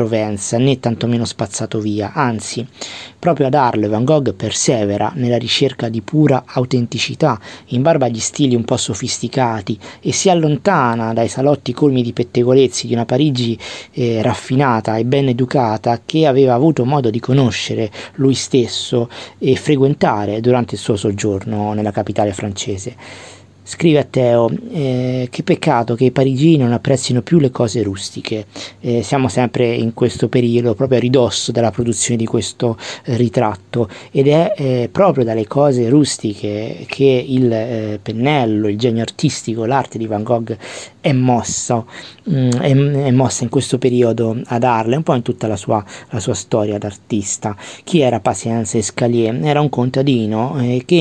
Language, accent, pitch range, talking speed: Italian, native, 110-135 Hz, 160 wpm